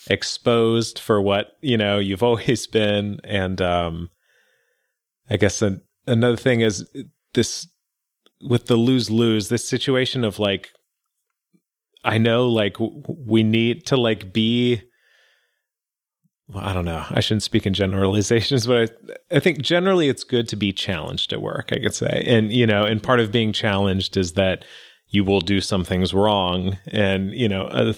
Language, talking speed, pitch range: English, 160 wpm, 100-120 Hz